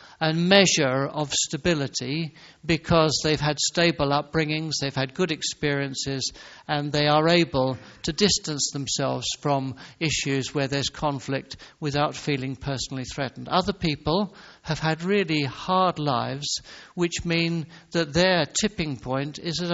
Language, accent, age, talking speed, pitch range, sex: English, British, 60-79, 135 wpm, 135-165 Hz, male